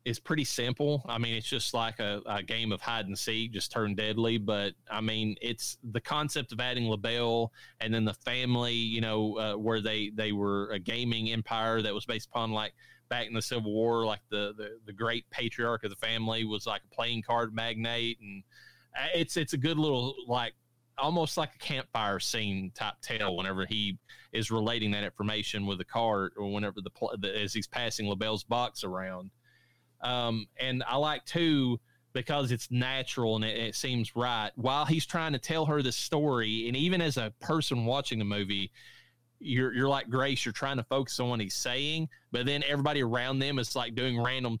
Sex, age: male, 30-49